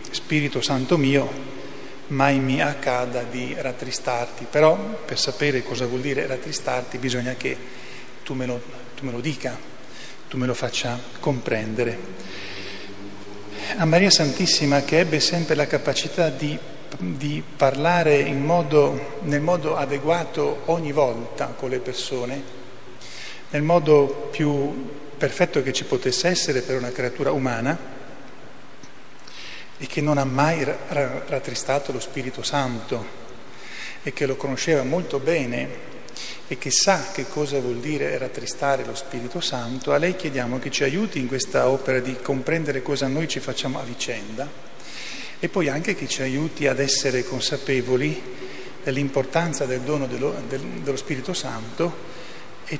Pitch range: 125-150 Hz